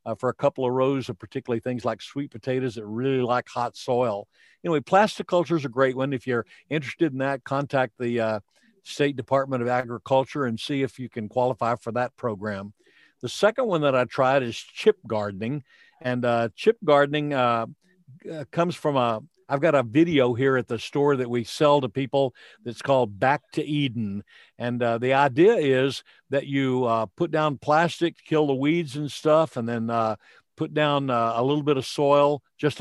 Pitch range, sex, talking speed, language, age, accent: 120-145 Hz, male, 200 wpm, English, 60-79, American